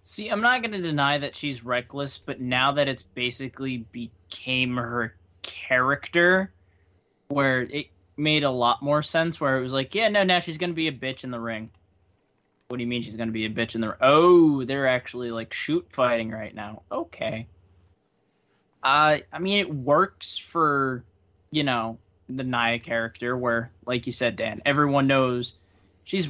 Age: 20-39